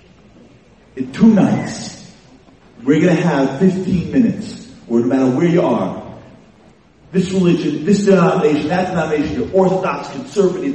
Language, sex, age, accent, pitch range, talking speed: English, male, 40-59, American, 155-230 Hz, 135 wpm